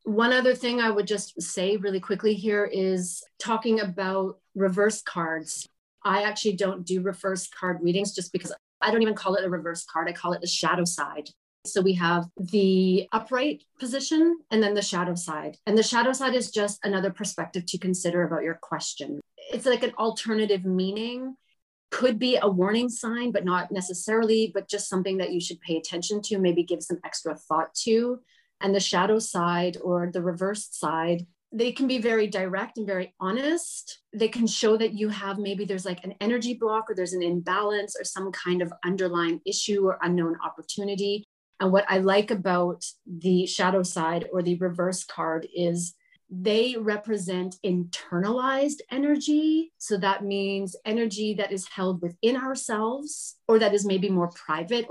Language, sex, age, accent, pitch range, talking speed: English, female, 30-49, American, 180-220 Hz, 180 wpm